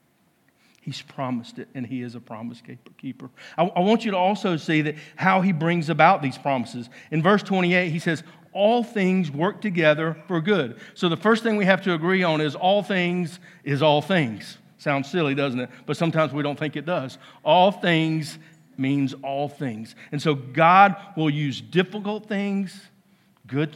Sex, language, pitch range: male, English, 135-180 Hz